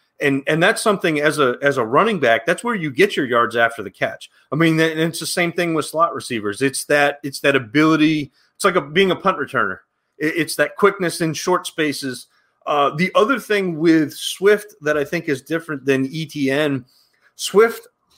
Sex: male